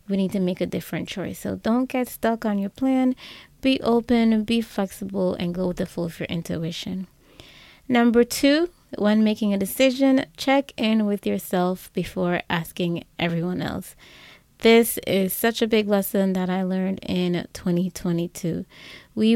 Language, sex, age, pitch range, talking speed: English, female, 20-39, 185-235 Hz, 160 wpm